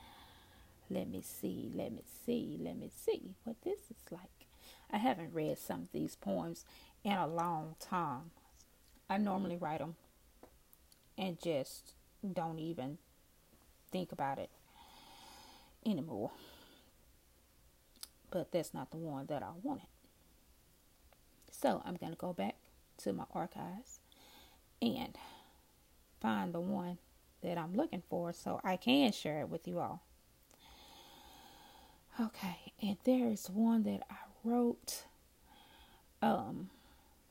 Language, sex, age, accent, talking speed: English, female, 30-49, American, 125 wpm